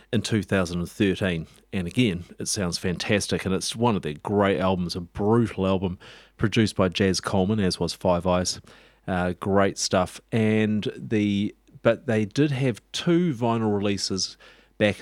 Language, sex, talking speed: English, male, 150 wpm